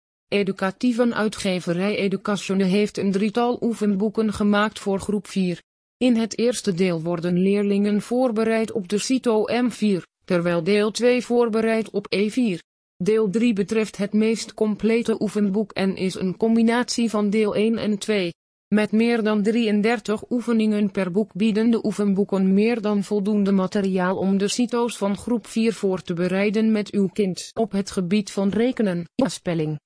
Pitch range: 195-225 Hz